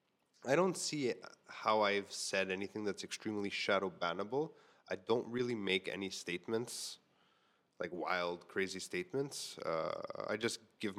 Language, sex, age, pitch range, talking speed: English, male, 20-39, 100-125 Hz, 135 wpm